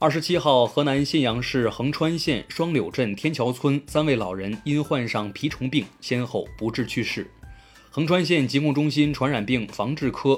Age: 20-39